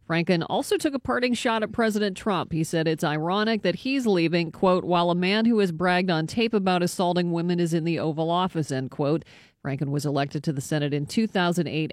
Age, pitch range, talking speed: 40-59, 165-210 Hz, 215 wpm